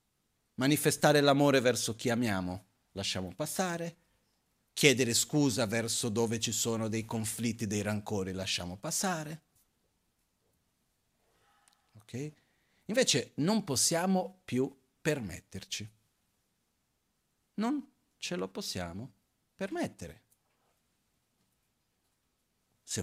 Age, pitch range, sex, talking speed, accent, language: 40-59, 105-150 Hz, male, 80 wpm, native, Italian